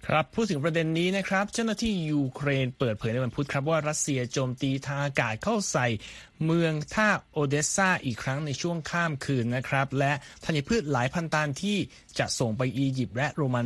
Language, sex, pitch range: Thai, male, 125-160 Hz